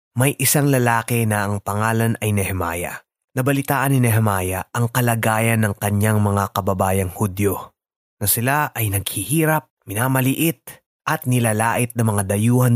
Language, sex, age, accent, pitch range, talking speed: Filipino, male, 20-39, native, 110-140 Hz, 130 wpm